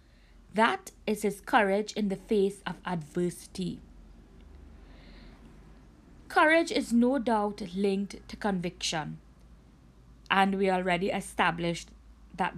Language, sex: English, female